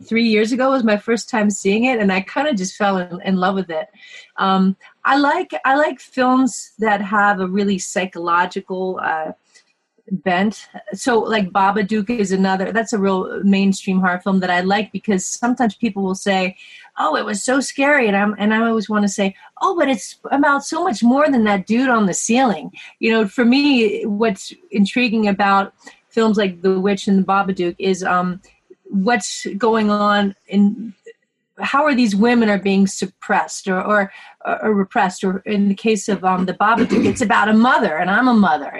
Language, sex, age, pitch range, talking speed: English, female, 30-49, 195-235 Hz, 195 wpm